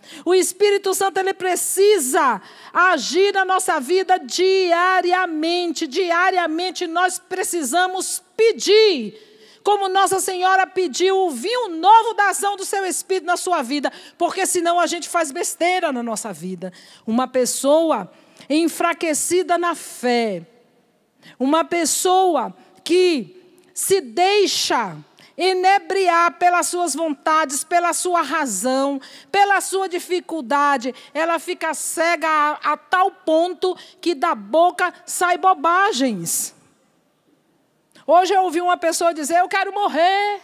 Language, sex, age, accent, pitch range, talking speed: Portuguese, female, 50-69, Brazilian, 310-370 Hz, 115 wpm